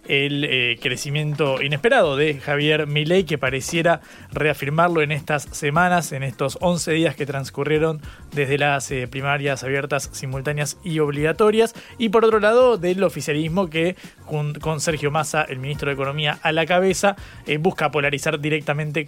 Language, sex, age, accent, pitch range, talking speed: Spanish, male, 20-39, Argentinian, 140-165 Hz, 140 wpm